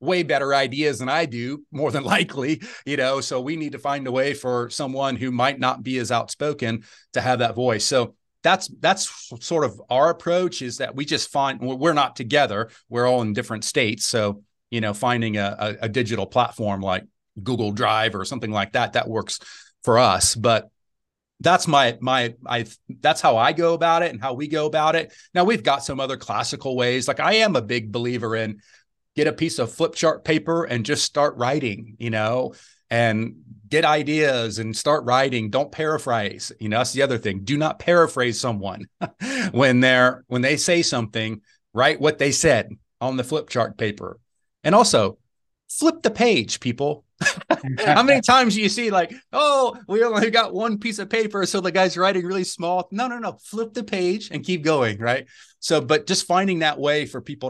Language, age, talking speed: English, 30-49, 200 wpm